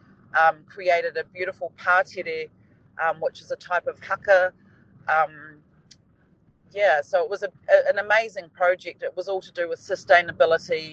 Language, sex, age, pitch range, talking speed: English, female, 30-49, 160-195 Hz, 160 wpm